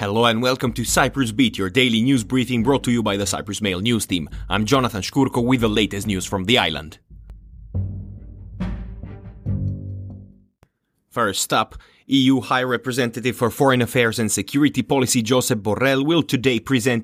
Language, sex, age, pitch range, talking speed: English, male, 30-49, 110-135 Hz, 160 wpm